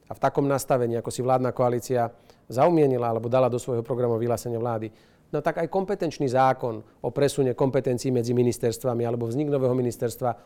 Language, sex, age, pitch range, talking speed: Slovak, male, 40-59, 120-140 Hz, 170 wpm